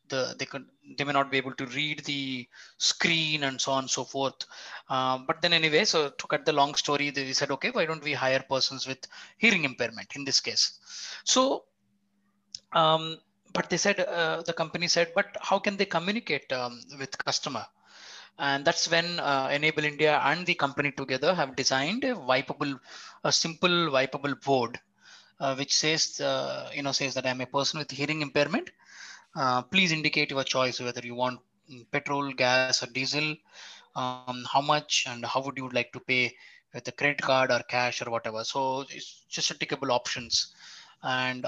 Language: English